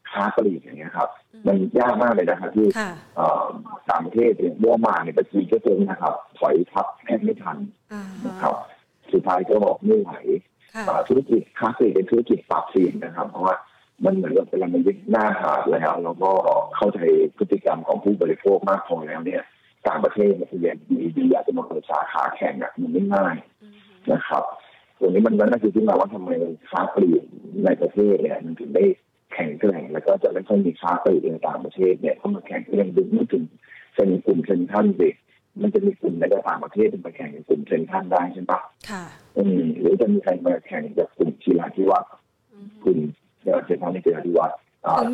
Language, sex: Thai, male